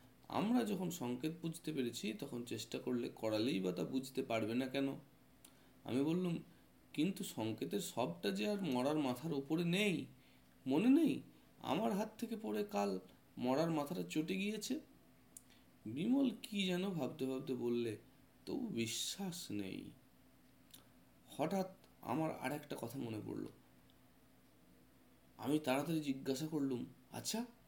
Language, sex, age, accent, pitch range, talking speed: Bengali, male, 30-49, native, 125-190 Hz, 100 wpm